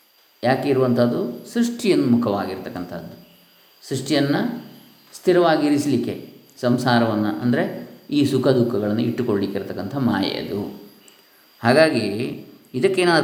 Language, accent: Kannada, native